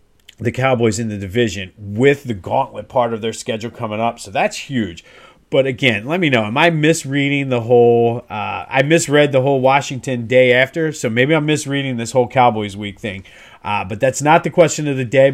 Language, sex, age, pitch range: English, male, 40-59, 115-145 Hz